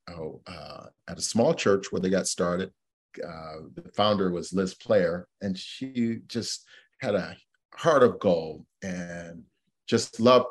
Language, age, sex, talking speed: English, 40-59, male, 155 wpm